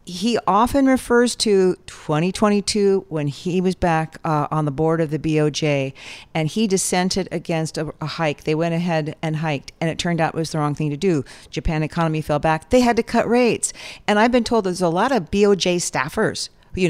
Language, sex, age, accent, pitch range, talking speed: English, female, 50-69, American, 155-205 Hz, 210 wpm